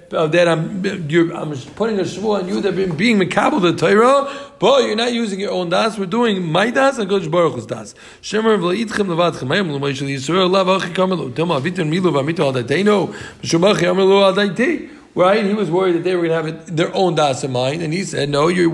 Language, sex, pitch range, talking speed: English, male, 165-205 Hz, 165 wpm